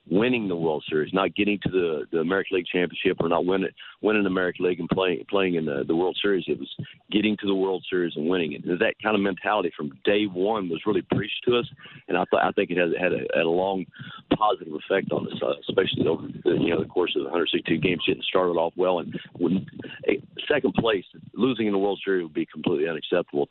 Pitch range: 90-105 Hz